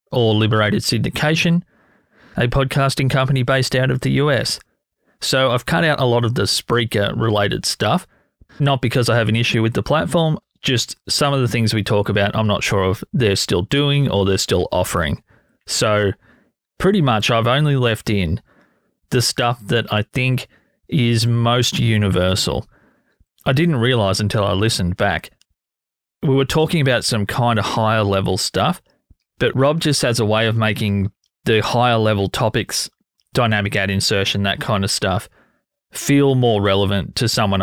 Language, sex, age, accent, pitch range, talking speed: English, male, 30-49, Australian, 100-130 Hz, 165 wpm